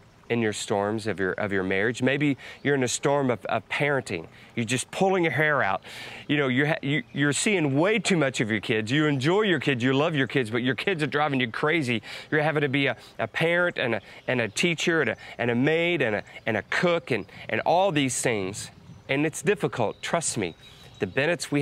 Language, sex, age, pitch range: English, male, 30-49, 115-150 Hz